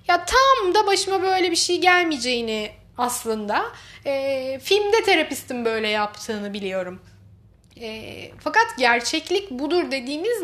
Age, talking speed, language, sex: 30-49, 115 wpm, Turkish, female